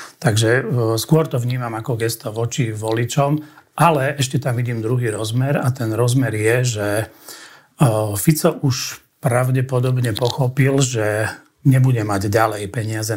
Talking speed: 130 wpm